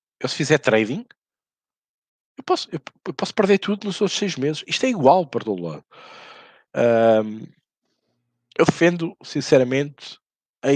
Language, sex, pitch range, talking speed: Portuguese, male, 105-140 Hz, 130 wpm